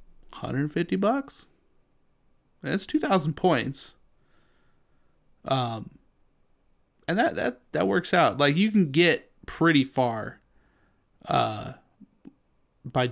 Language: English